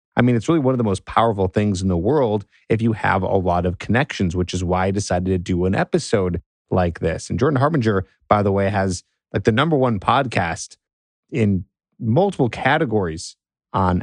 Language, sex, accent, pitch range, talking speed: English, male, American, 90-110 Hz, 200 wpm